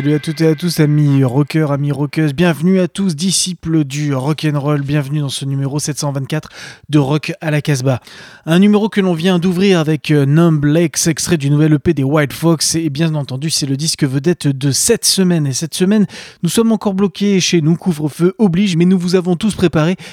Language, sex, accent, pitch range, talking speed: French, male, French, 145-180 Hz, 205 wpm